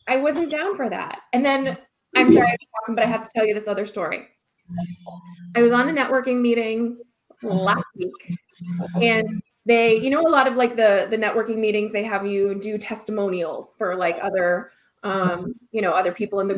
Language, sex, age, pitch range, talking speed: English, female, 20-39, 215-265 Hz, 190 wpm